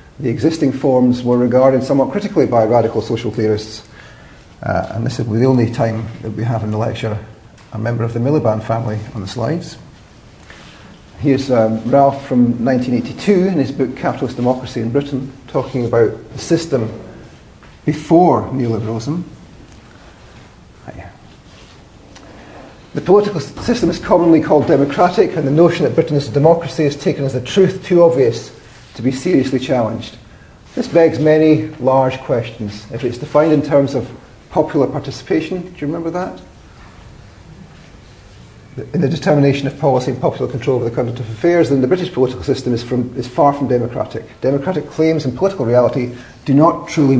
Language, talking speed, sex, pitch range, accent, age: English, 160 wpm, male, 115-150 Hz, British, 40-59